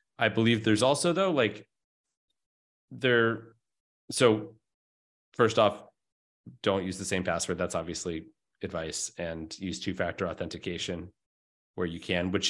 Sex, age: male, 30-49